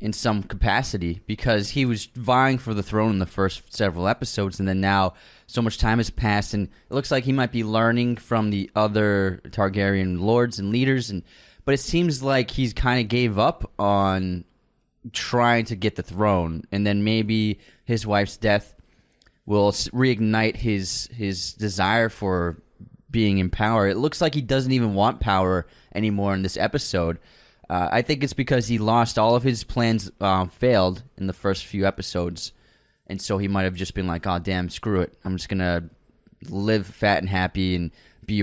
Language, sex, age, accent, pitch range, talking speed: English, male, 20-39, American, 95-115 Hz, 190 wpm